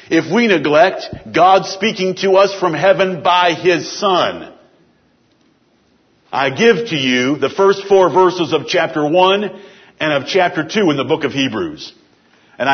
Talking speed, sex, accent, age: 155 wpm, male, American, 60-79